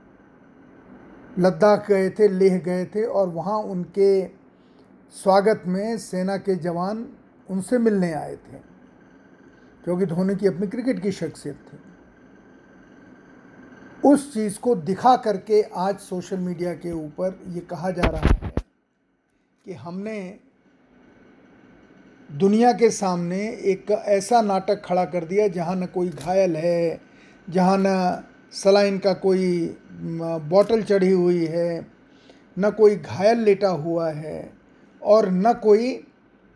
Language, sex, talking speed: Hindi, male, 125 wpm